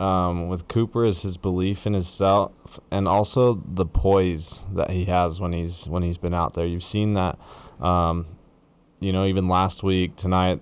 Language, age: English, 20-39